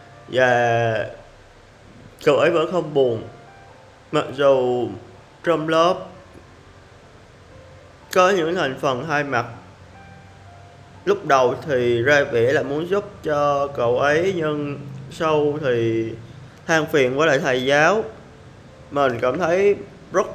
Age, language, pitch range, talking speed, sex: 20-39, Vietnamese, 115-150 Hz, 120 wpm, male